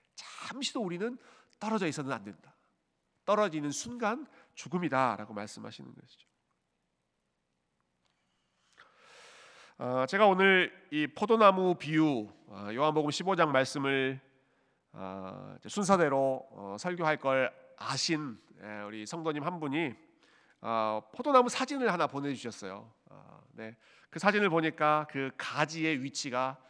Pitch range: 115-165 Hz